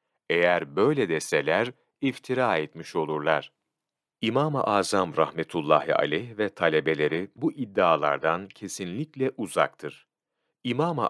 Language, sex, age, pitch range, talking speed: Turkish, male, 40-59, 95-130 Hz, 90 wpm